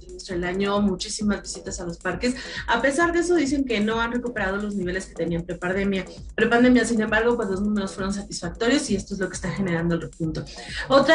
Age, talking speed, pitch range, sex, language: 30-49, 205 wpm, 190-235 Hz, female, Spanish